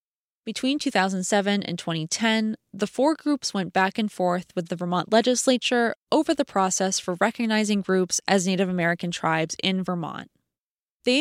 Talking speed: 150 wpm